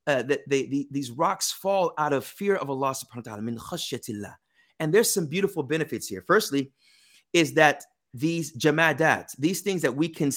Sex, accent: male, American